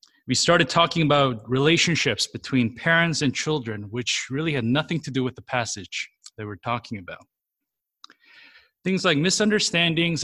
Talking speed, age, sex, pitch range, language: 145 wpm, 30-49, male, 125-160 Hz, English